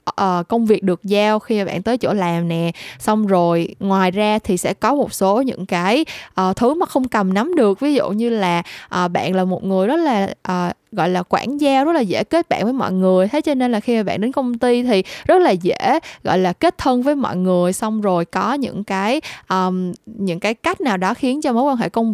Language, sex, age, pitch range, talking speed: Vietnamese, female, 10-29, 185-250 Hz, 250 wpm